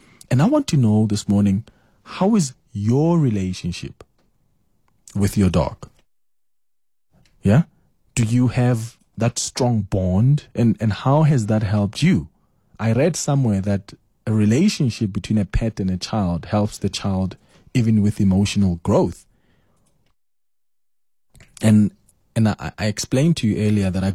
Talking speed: 140 wpm